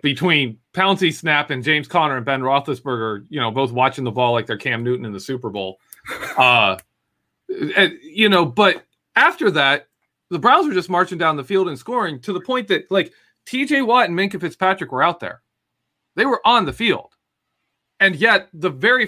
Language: English